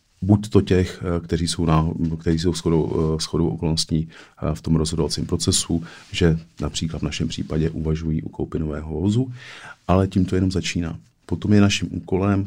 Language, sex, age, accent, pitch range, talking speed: Czech, male, 40-59, native, 80-90 Hz, 145 wpm